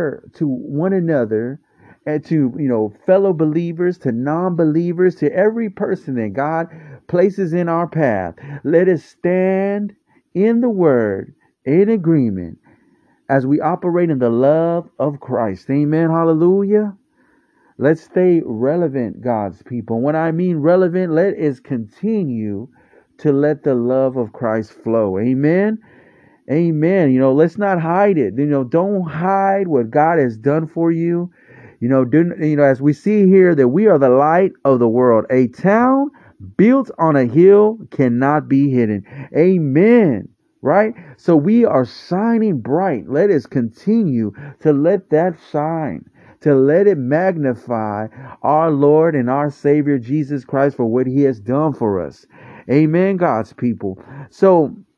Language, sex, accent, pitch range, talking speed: English, male, American, 130-180 Hz, 150 wpm